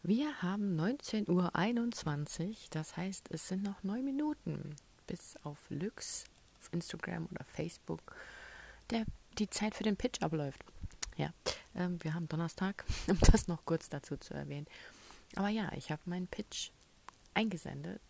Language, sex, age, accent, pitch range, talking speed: German, female, 30-49, German, 155-190 Hz, 140 wpm